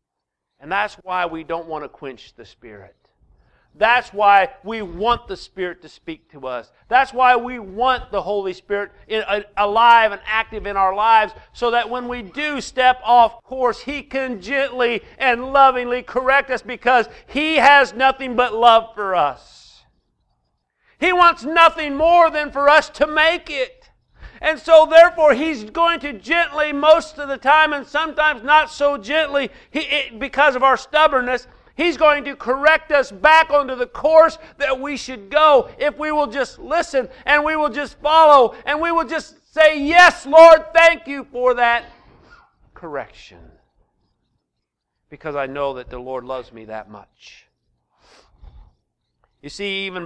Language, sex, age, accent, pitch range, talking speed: English, male, 50-69, American, 195-300 Hz, 160 wpm